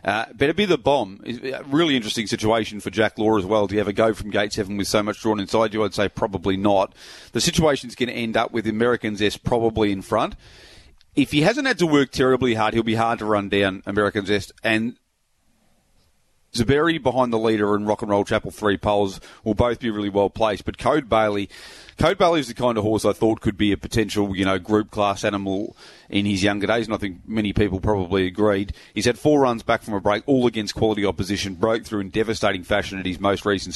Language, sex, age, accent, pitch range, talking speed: English, male, 30-49, Australian, 100-115 Hz, 235 wpm